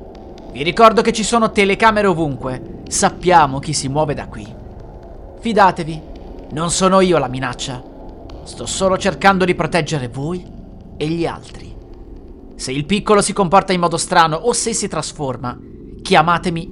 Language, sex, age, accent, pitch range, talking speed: Italian, male, 30-49, native, 130-180 Hz, 145 wpm